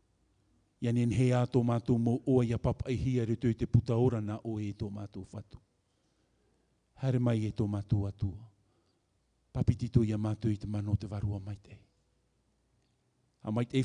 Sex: male